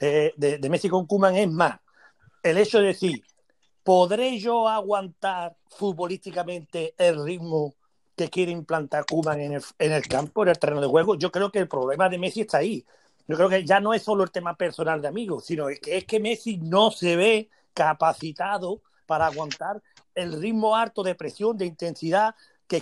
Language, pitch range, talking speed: Spanish, 160-195 Hz, 185 wpm